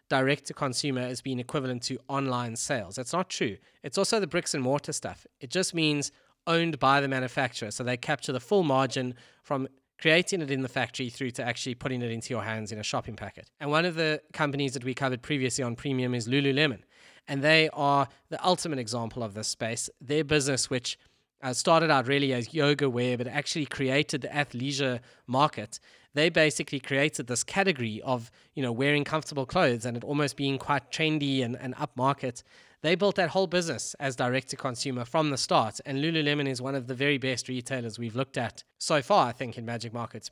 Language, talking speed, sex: English, 205 wpm, male